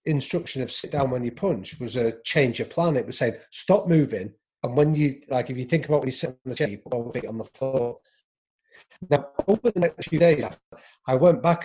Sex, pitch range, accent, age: male, 115-165 Hz, British, 40-59